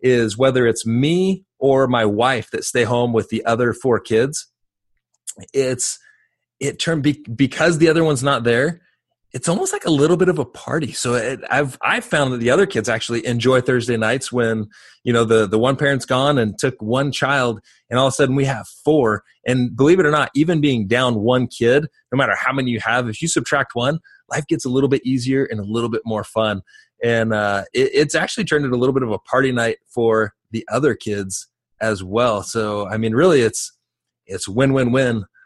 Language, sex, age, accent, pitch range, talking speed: English, male, 30-49, American, 110-145 Hz, 210 wpm